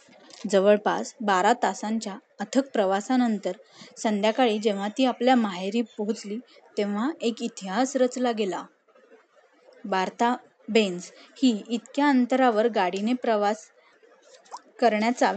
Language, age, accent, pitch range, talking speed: Marathi, 20-39, native, 215-260 Hz, 95 wpm